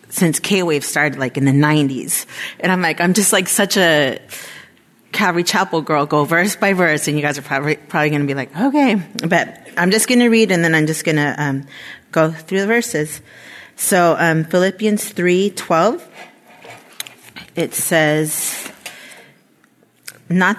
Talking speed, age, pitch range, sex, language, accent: 170 wpm, 30-49, 160-190 Hz, female, English, American